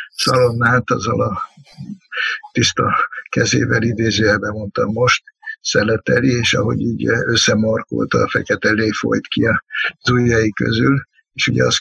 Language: Hungarian